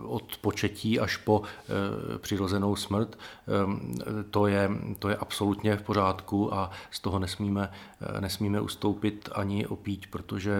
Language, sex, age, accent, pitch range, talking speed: Czech, male, 40-59, native, 100-110 Hz, 140 wpm